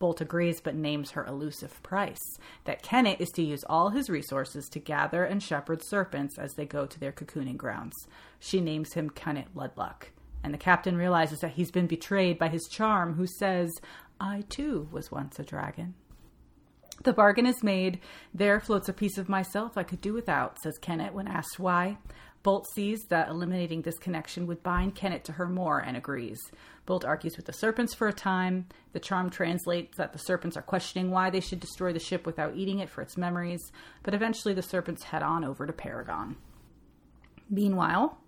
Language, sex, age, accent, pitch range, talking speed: English, female, 30-49, American, 165-195 Hz, 190 wpm